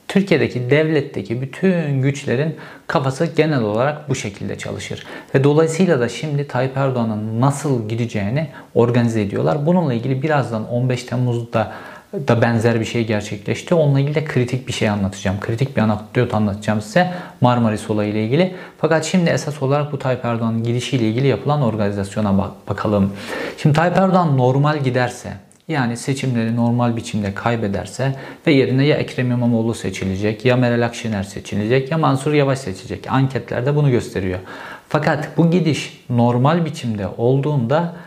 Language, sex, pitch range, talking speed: Turkish, male, 115-150 Hz, 145 wpm